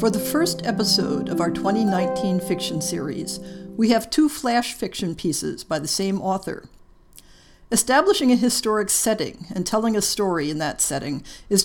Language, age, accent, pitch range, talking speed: English, 50-69, American, 180-240 Hz, 160 wpm